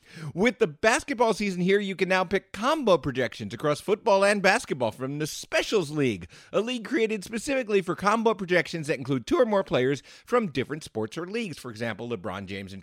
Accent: American